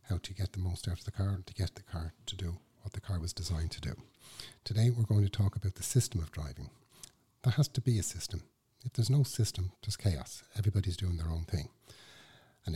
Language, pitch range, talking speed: English, 90-120 Hz, 240 wpm